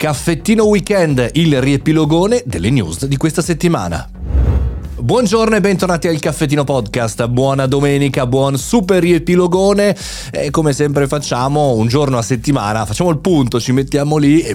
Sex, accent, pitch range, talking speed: male, native, 115-165 Hz, 145 wpm